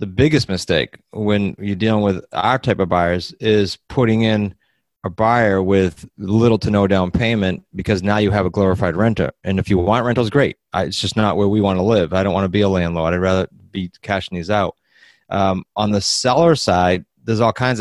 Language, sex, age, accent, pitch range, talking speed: English, male, 30-49, American, 95-110 Hz, 220 wpm